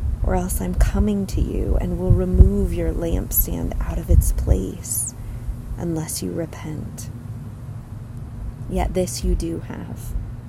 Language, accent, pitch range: English, American, 115-160 Hz